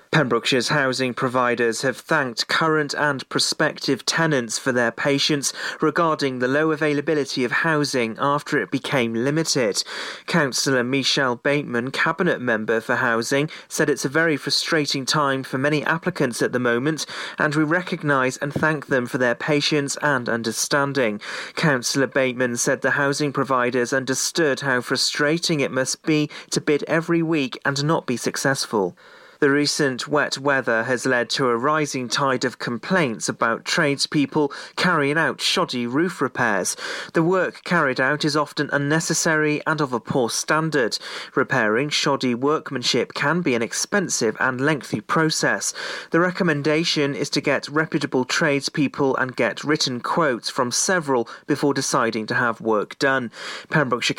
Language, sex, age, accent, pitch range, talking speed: English, male, 30-49, British, 130-155 Hz, 145 wpm